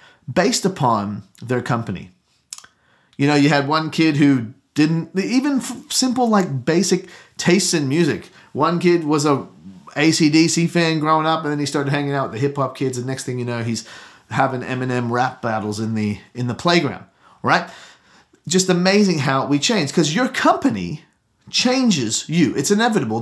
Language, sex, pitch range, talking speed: English, male, 125-180 Hz, 170 wpm